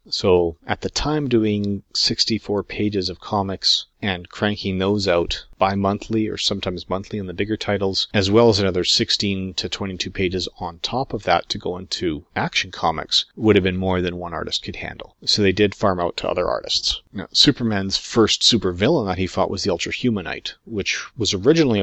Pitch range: 90-105 Hz